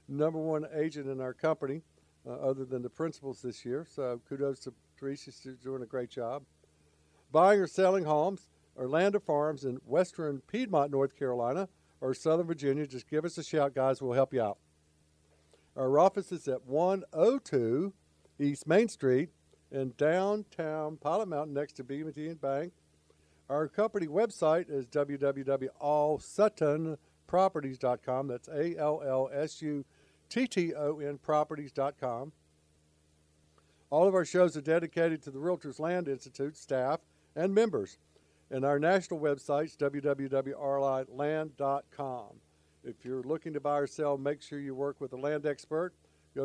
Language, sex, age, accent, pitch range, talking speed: English, male, 60-79, American, 130-160 Hz, 145 wpm